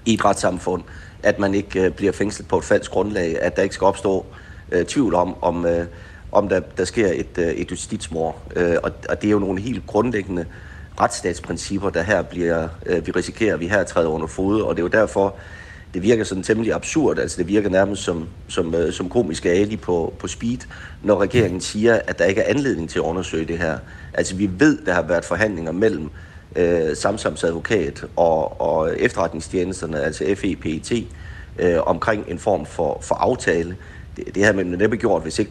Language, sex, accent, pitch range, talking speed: Danish, male, native, 85-105 Hz, 190 wpm